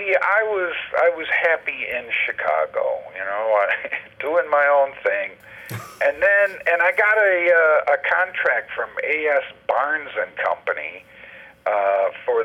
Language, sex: English, male